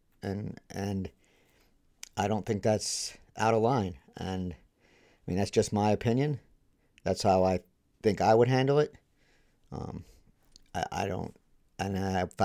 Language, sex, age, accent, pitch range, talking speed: English, male, 50-69, American, 95-110 Hz, 145 wpm